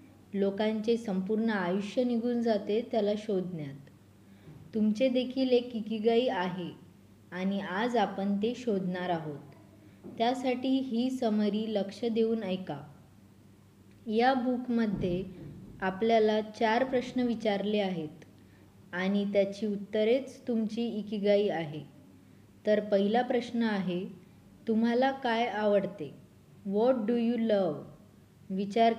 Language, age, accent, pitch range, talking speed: Hindi, 20-39, native, 180-225 Hz, 85 wpm